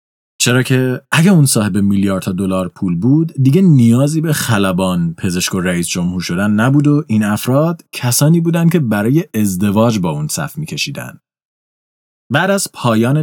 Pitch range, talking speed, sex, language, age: 100-150 Hz, 155 wpm, male, Persian, 30-49